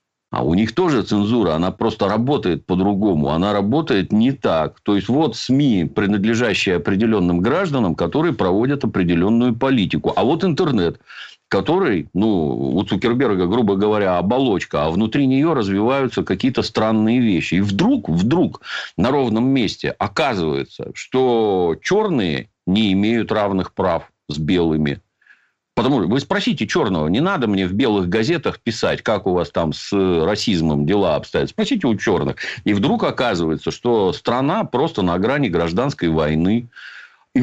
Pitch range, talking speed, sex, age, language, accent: 95-125 Hz, 145 wpm, male, 50-69, Russian, native